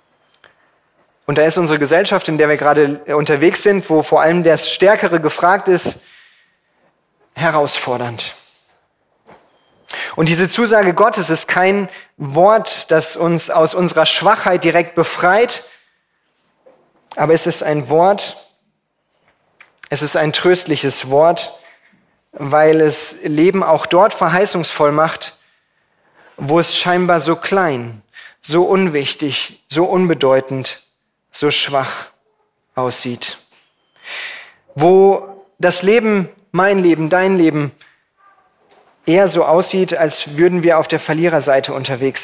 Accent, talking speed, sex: German, 110 wpm, male